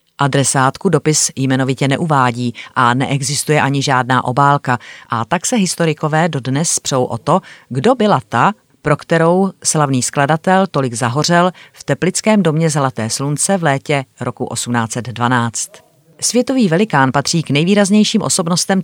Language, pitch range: Czech, 130-160 Hz